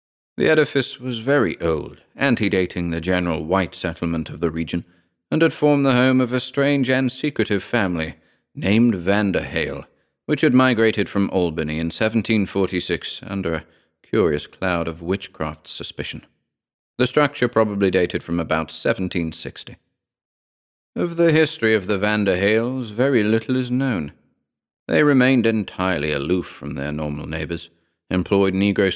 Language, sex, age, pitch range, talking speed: English, male, 40-59, 85-115 Hz, 145 wpm